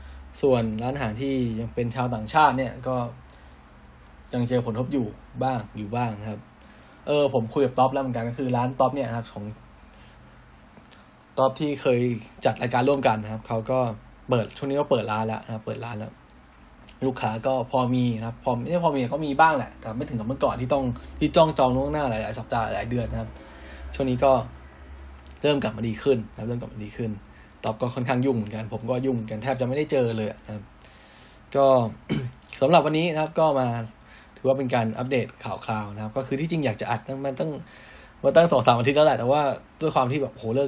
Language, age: Thai, 10-29